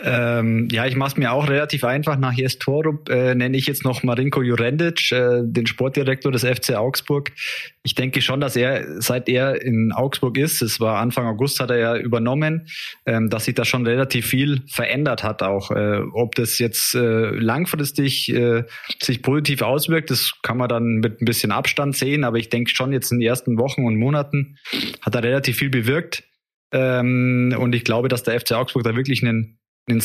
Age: 20-39